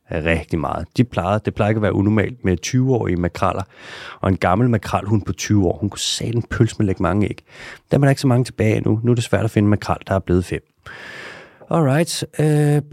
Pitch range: 95-130 Hz